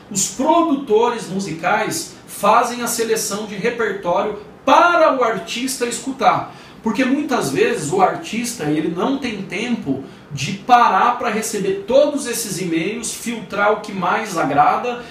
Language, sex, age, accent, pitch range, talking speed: Portuguese, male, 40-59, Brazilian, 185-235 Hz, 125 wpm